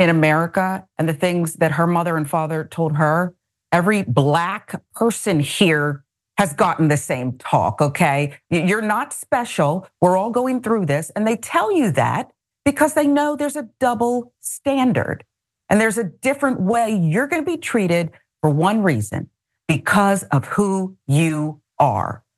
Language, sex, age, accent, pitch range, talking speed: English, female, 40-59, American, 155-235 Hz, 160 wpm